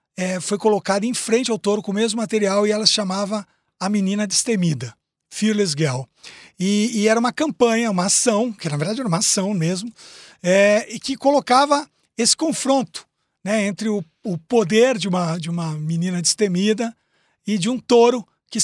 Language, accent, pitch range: Portuguese, Brazilian, 175-230 Hz